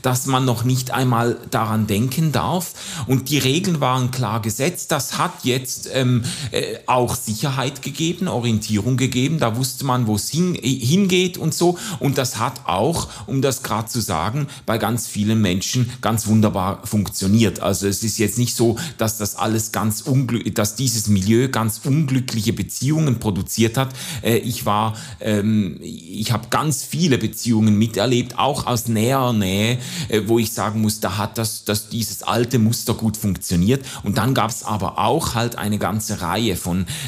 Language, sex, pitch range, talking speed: German, male, 105-130 Hz, 175 wpm